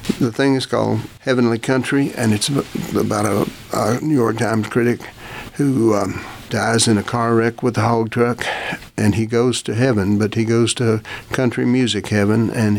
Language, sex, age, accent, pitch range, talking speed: English, male, 60-79, American, 105-120 Hz, 185 wpm